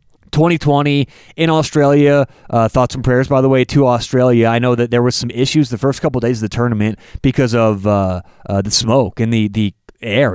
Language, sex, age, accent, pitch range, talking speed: English, male, 30-49, American, 125-165 Hz, 215 wpm